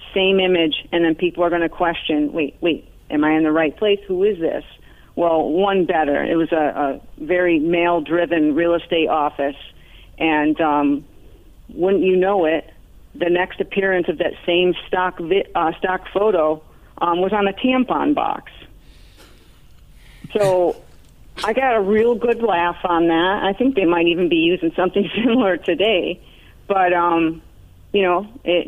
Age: 40-59